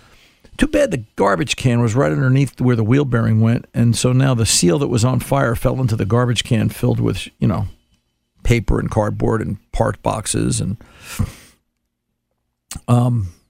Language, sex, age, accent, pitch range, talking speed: English, male, 50-69, American, 105-135 Hz, 175 wpm